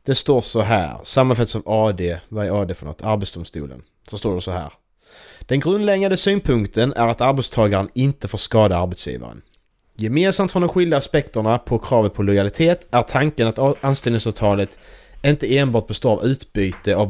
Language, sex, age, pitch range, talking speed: Swedish, male, 30-49, 95-125 Hz, 165 wpm